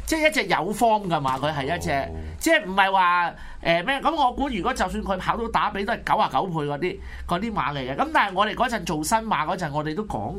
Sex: male